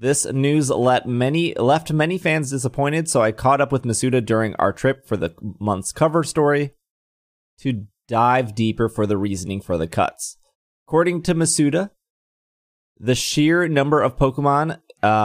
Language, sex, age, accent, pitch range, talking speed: English, male, 20-39, American, 110-145 Hz, 150 wpm